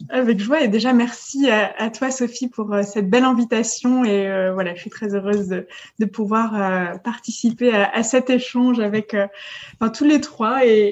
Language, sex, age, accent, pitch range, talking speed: French, female, 20-39, French, 210-255 Hz, 190 wpm